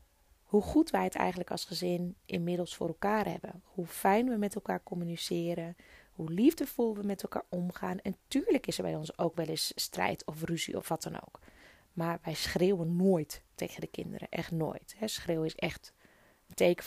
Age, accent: 20-39, Dutch